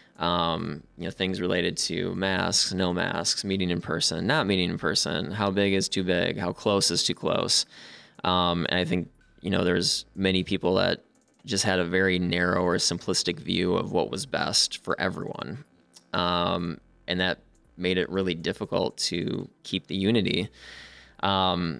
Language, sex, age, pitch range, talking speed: English, male, 20-39, 90-100 Hz, 170 wpm